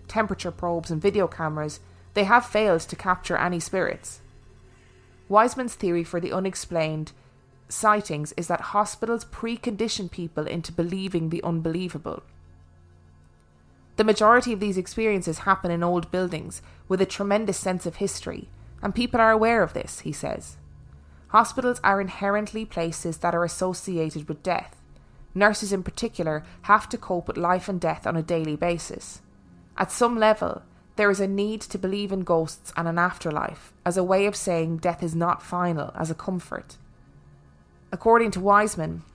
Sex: female